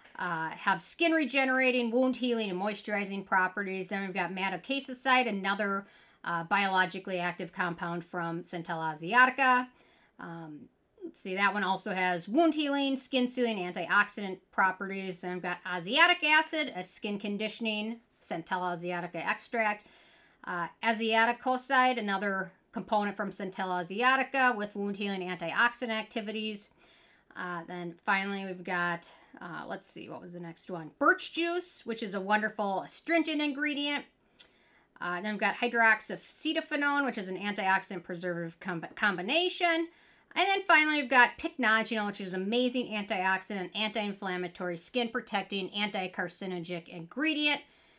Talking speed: 135 wpm